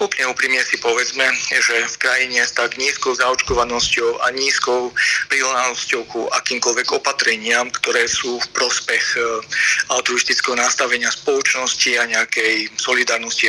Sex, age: male, 40-59